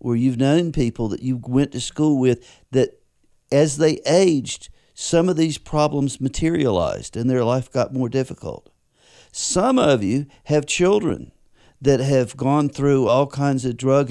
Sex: male